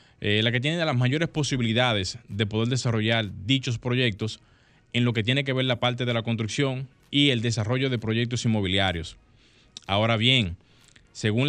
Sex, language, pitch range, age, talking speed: male, Spanish, 110-130 Hz, 20-39, 165 wpm